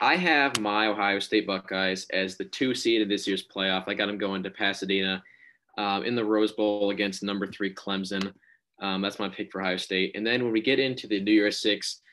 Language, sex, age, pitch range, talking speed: English, male, 20-39, 95-110 Hz, 230 wpm